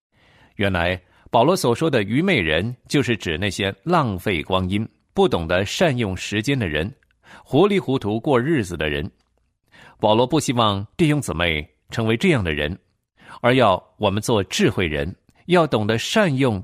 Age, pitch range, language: 50-69, 95-150 Hz, Chinese